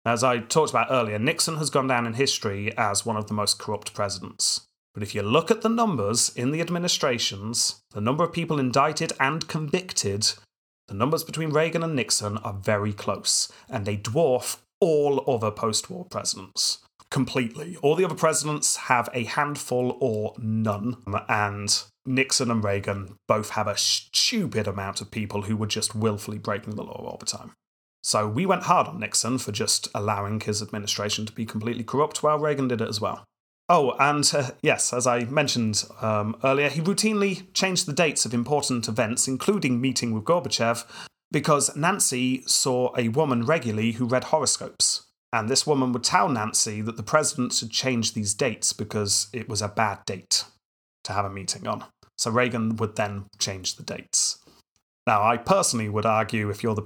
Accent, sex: British, male